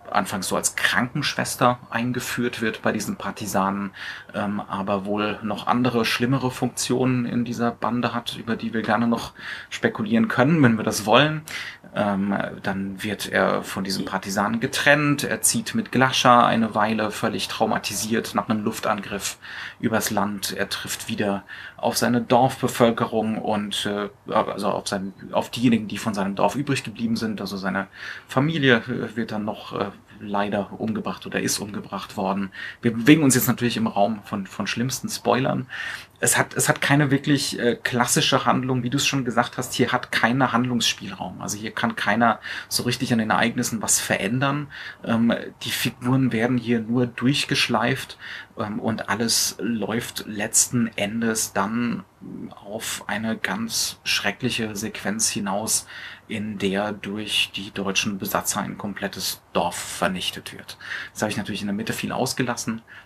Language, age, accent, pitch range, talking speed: German, 30-49, German, 105-125 Hz, 155 wpm